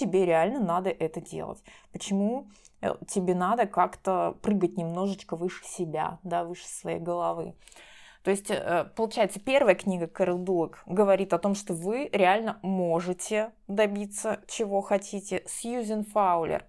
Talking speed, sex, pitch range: 130 wpm, female, 175-215 Hz